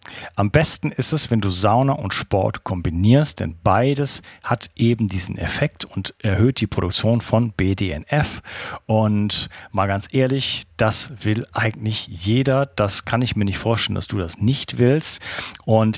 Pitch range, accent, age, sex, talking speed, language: 100-125 Hz, German, 40-59, male, 160 wpm, German